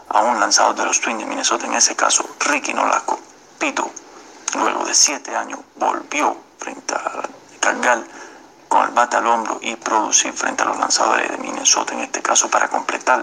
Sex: male